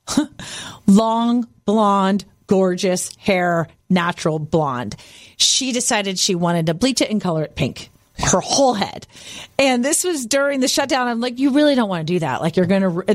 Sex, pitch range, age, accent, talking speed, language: female, 180-280 Hz, 40-59, American, 175 wpm, English